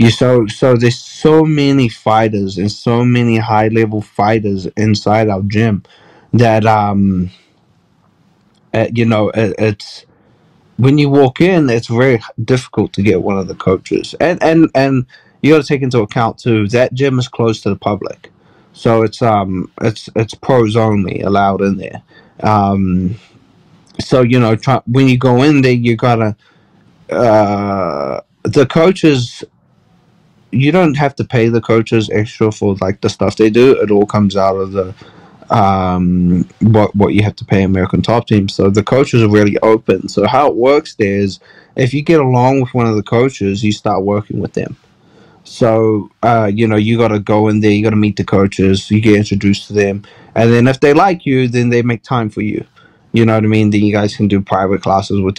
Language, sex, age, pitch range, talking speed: English, male, 20-39, 100-120 Hz, 195 wpm